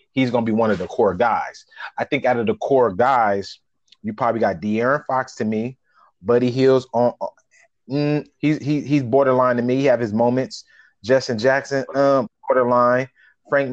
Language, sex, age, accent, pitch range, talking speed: English, male, 30-49, American, 120-140 Hz, 170 wpm